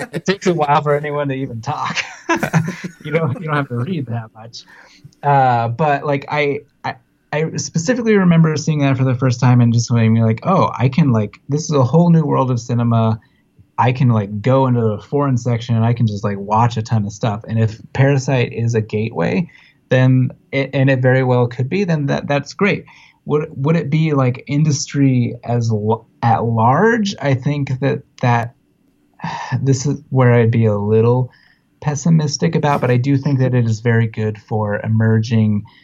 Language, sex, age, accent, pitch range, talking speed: English, male, 20-39, American, 110-145 Hz, 200 wpm